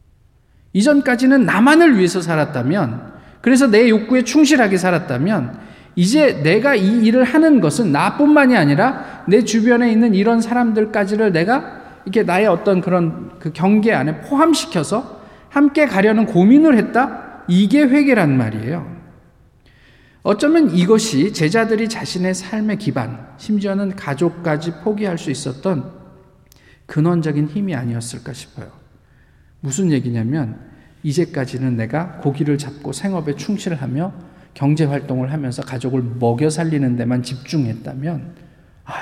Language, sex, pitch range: Korean, male, 145-220 Hz